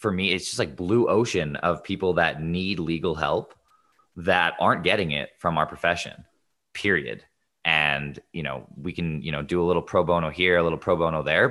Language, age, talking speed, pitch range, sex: English, 20-39, 205 wpm, 75-90 Hz, male